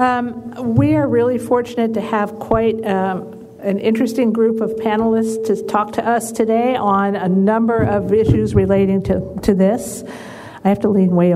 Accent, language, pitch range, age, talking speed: American, English, 190-225 Hz, 50-69, 175 wpm